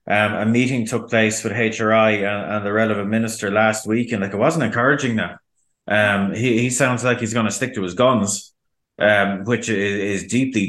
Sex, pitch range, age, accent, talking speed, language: male, 100-115 Hz, 30-49, Irish, 210 wpm, English